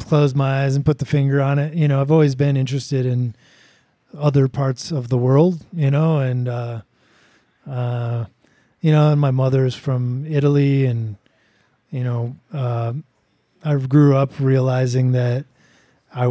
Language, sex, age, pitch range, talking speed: English, male, 20-39, 125-150 Hz, 160 wpm